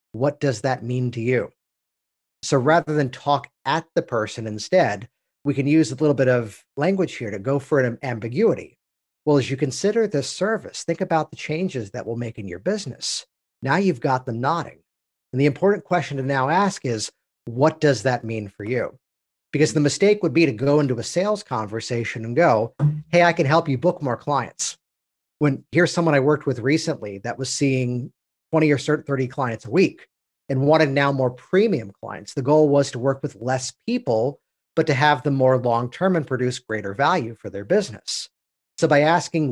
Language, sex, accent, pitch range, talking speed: English, male, American, 125-155 Hz, 200 wpm